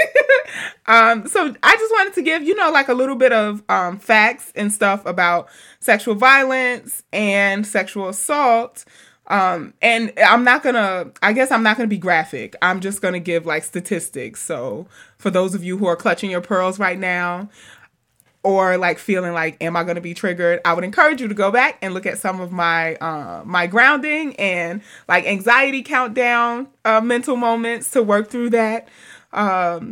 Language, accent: English, American